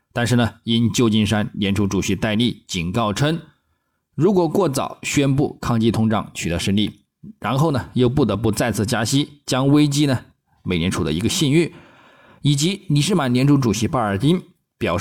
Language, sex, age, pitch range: Chinese, male, 20-39, 95-140 Hz